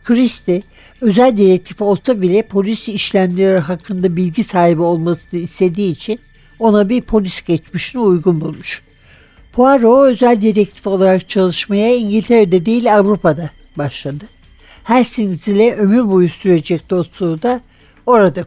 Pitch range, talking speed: 175-220 Hz, 115 wpm